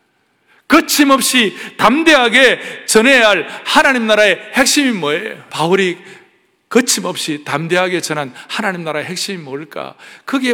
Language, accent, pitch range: Korean, native, 150-220 Hz